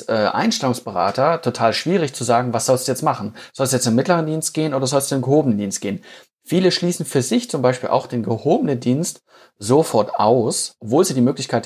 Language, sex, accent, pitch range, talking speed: German, male, German, 115-140 Hz, 215 wpm